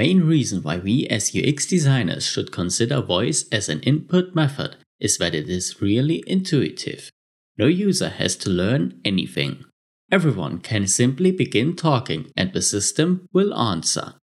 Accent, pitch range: German, 100-160 Hz